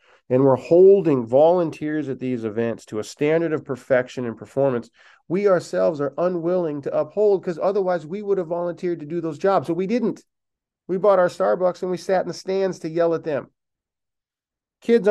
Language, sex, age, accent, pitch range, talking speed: English, male, 40-59, American, 130-175 Hz, 190 wpm